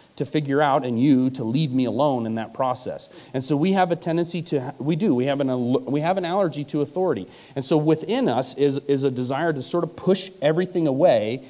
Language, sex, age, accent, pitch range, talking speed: English, male, 40-59, American, 130-170 Hz, 230 wpm